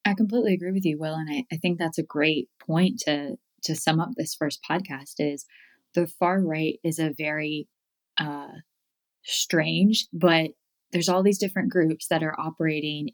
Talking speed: 180 wpm